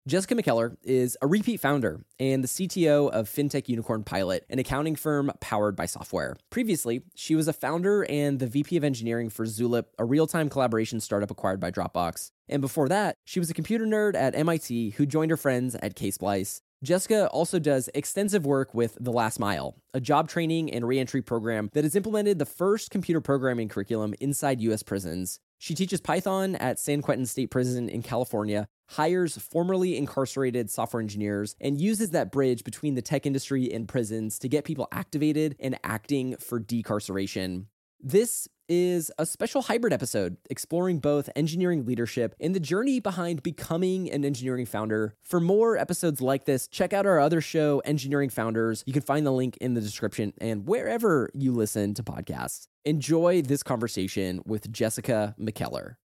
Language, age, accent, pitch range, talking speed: English, 20-39, American, 115-165 Hz, 175 wpm